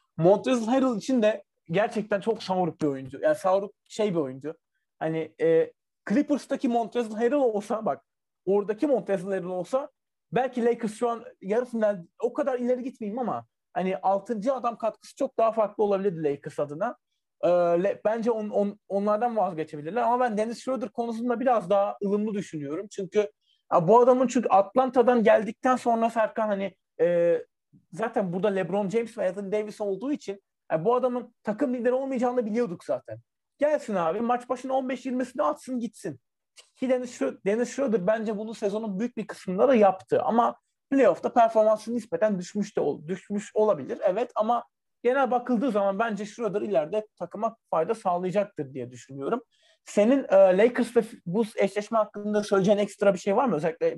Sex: male